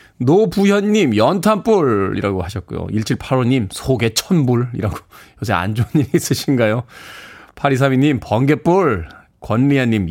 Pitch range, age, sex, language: 110-175 Hz, 20-39, male, Korean